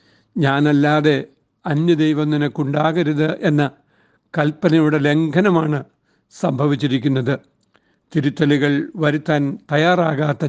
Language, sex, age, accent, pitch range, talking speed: Malayalam, male, 60-79, native, 145-165 Hz, 65 wpm